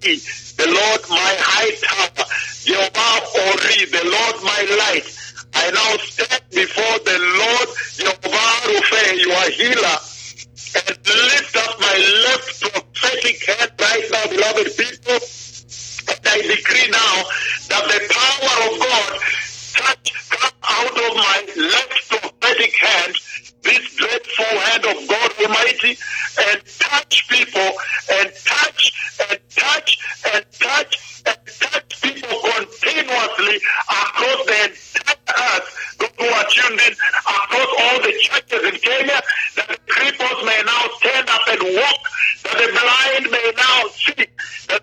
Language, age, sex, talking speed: English, 60-79, male, 125 wpm